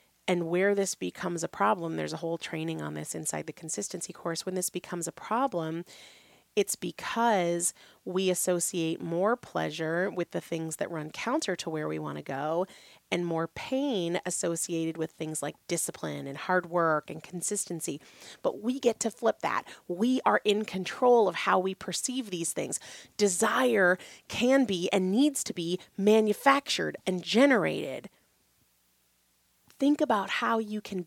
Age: 30-49